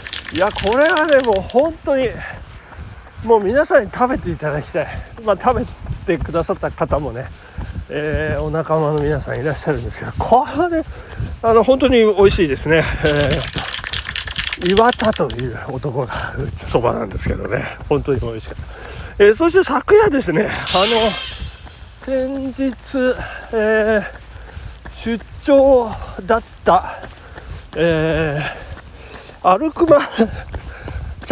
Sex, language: male, Japanese